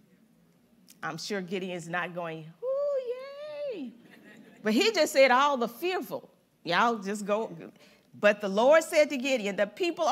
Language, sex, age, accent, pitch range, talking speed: English, female, 40-59, American, 200-285 Hz, 150 wpm